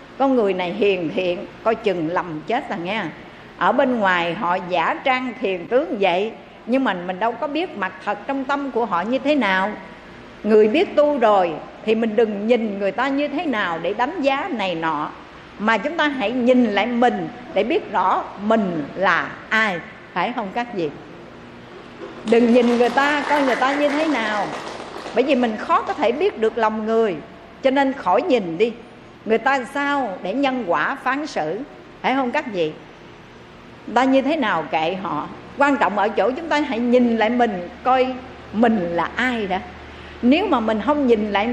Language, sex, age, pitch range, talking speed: Vietnamese, female, 60-79, 195-270 Hz, 195 wpm